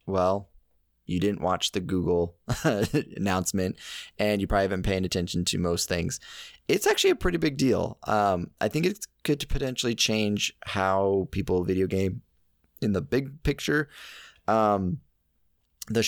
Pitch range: 90-115 Hz